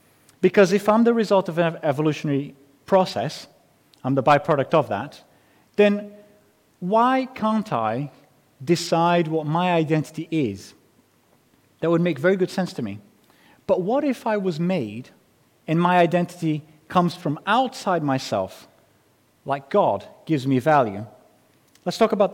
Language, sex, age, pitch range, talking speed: English, male, 30-49, 145-205 Hz, 140 wpm